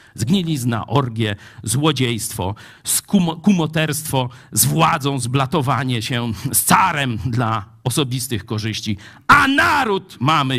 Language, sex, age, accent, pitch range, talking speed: Polish, male, 50-69, native, 115-155 Hz, 90 wpm